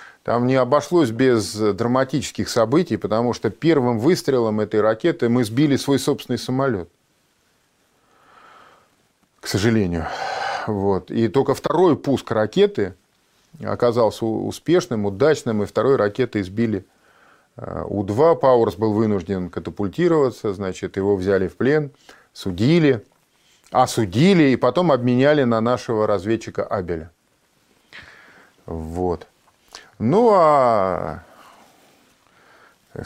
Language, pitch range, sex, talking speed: Russian, 100-140 Hz, male, 100 wpm